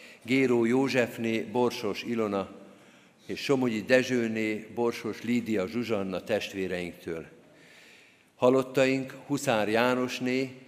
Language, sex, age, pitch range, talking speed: Hungarian, male, 50-69, 105-120 Hz, 80 wpm